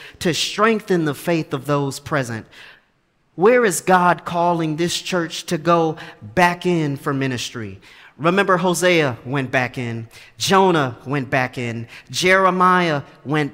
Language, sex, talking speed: English, male, 135 wpm